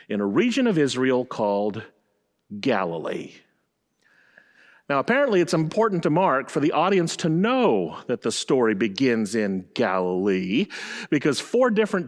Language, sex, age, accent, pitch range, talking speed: English, male, 40-59, American, 130-195 Hz, 135 wpm